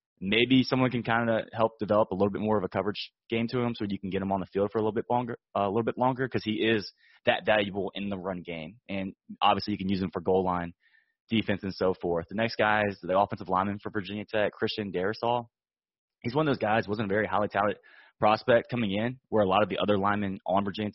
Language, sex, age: English, male, 20-39